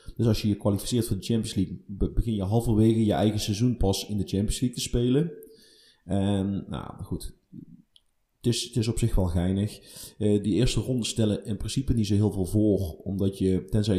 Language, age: Dutch, 30-49